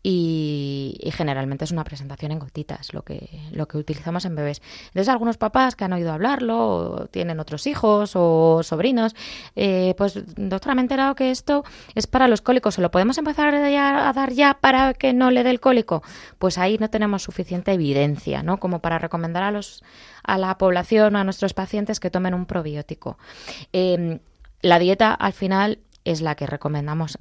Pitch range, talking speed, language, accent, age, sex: 155-200 Hz, 190 wpm, Spanish, Spanish, 20-39, female